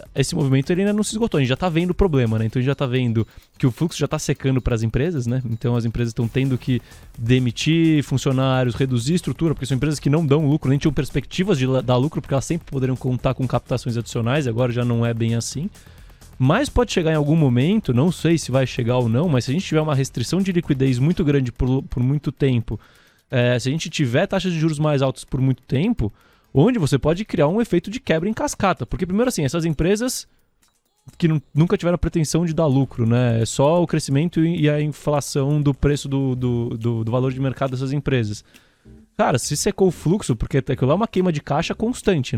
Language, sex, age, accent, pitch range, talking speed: Portuguese, male, 20-39, Brazilian, 125-160 Hz, 230 wpm